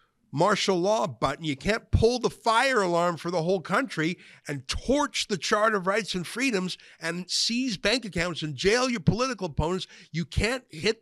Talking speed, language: 180 wpm, English